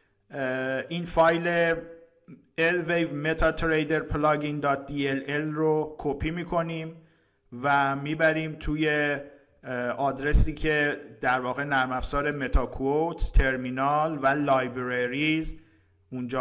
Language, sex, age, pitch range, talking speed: Persian, male, 50-69, 125-155 Hz, 85 wpm